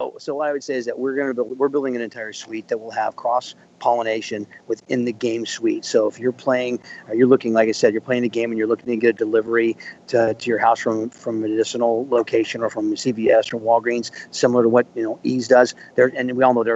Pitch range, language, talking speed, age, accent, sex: 115-145 Hz, English, 255 wpm, 40-59, American, male